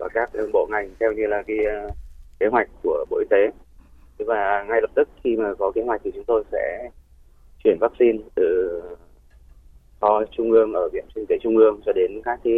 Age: 20-39